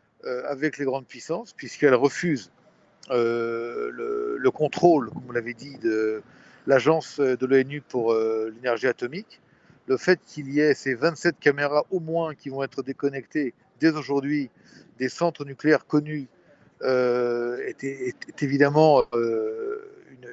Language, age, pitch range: French, 50-69, 125-155 Hz